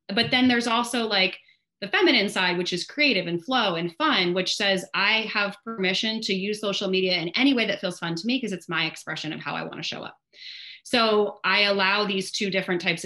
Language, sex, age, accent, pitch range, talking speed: English, female, 30-49, American, 170-205 Hz, 230 wpm